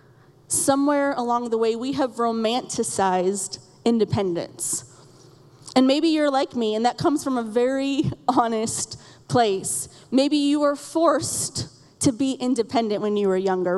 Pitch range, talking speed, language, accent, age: 260-310 Hz, 140 wpm, English, American, 30-49